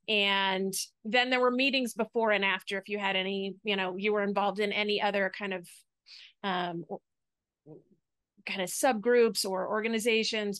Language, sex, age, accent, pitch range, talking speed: English, female, 30-49, American, 190-215 Hz, 160 wpm